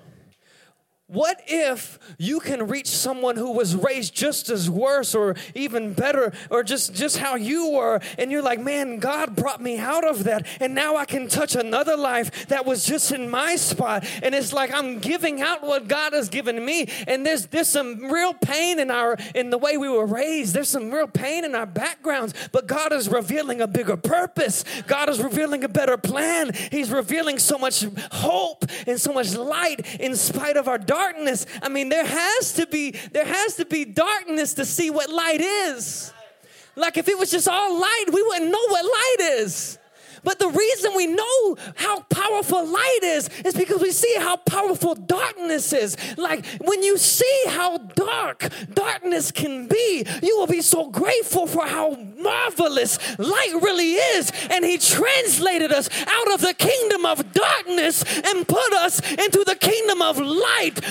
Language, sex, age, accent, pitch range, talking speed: English, male, 20-39, American, 255-355 Hz, 185 wpm